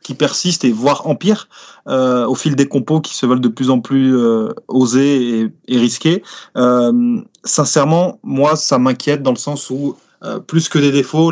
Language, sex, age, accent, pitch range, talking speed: French, male, 20-39, French, 125-150 Hz, 190 wpm